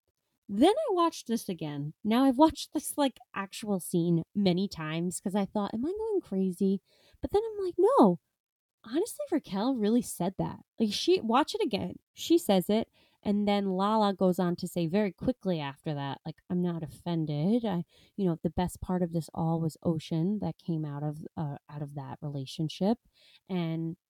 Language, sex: English, female